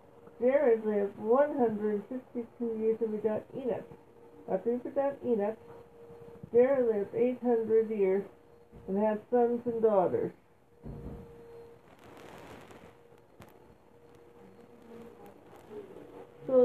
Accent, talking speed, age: American, 85 wpm, 60-79